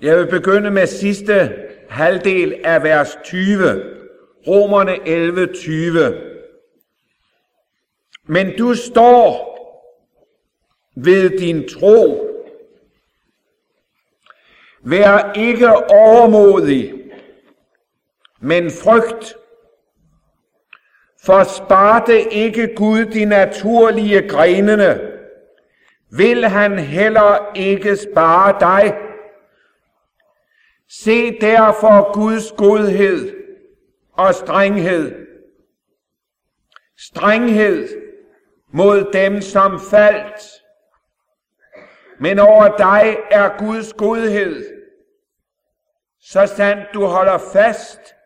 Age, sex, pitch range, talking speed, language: 50-69, male, 195-305 Hz, 70 wpm, English